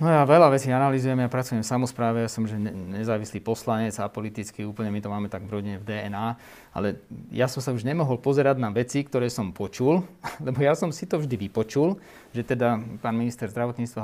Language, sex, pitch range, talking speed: Slovak, male, 110-130 Hz, 210 wpm